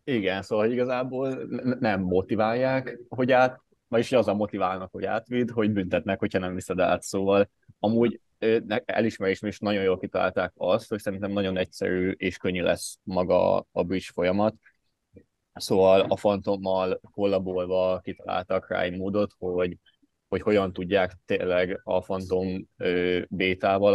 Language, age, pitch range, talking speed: Hungarian, 20-39, 90-105 Hz, 135 wpm